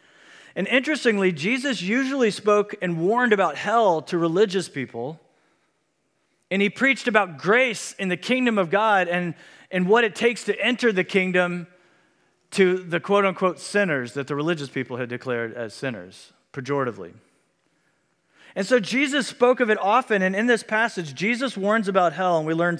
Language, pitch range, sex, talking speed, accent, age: Italian, 150-205 Hz, male, 165 wpm, American, 40-59